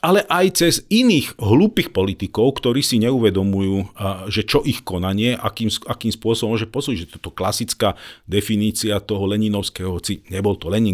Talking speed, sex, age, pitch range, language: 145 wpm, male, 40-59, 95-120 Hz, Slovak